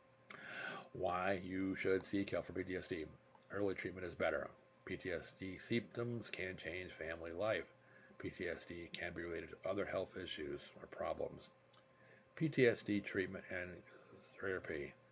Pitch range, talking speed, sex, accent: 90-115 Hz, 125 wpm, male, American